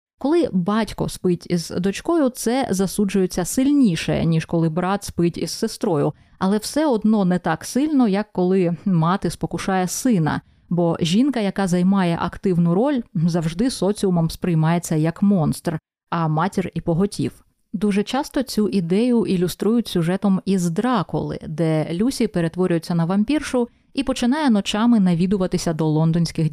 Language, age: Ukrainian, 20-39